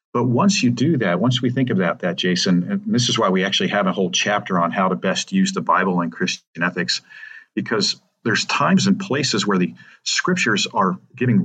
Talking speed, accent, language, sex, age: 220 wpm, American, English, male, 50-69